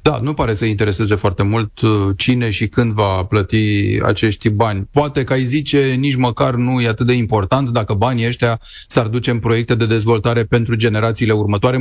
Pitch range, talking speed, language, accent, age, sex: 105-130 Hz, 190 wpm, Romanian, native, 30-49, male